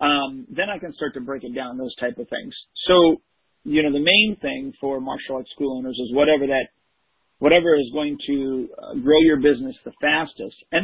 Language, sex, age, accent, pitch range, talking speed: English, male, 40-59, American, 135-170 Hz, 205 wpm